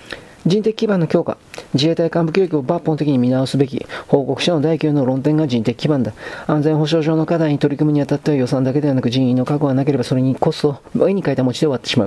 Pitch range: 130-155 Hz